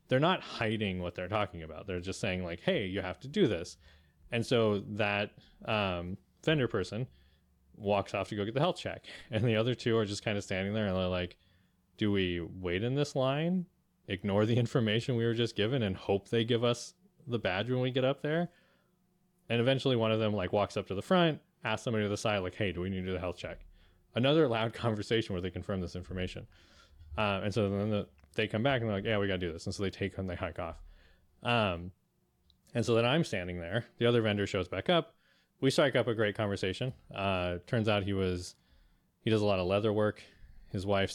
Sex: male